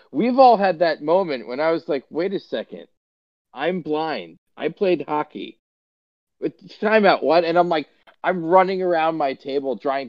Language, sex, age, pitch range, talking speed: English, male, 40-59, 115-165 Hz, 170 wpm